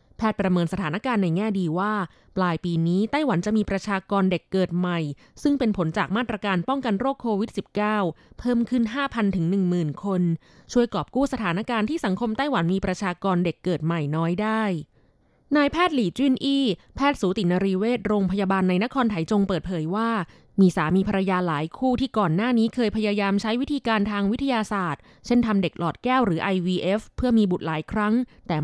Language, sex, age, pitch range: Thai, female, 20-39, 180-225 Hz